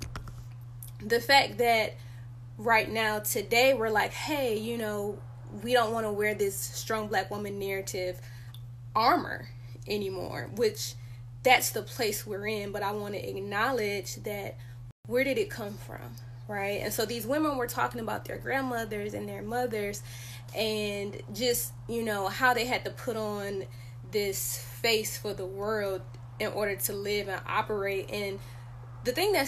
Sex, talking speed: female, 160 wpm